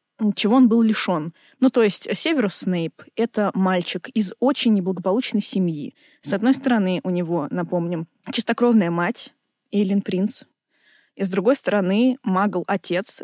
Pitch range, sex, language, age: 185-235 Hz, female, Russian, 20-39